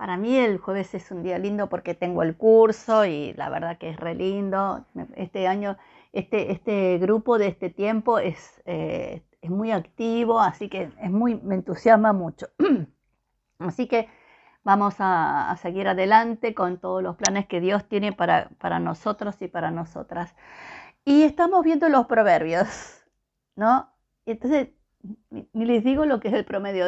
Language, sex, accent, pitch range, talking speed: Spanish, female, American, 185-245 Hz, 165 wpm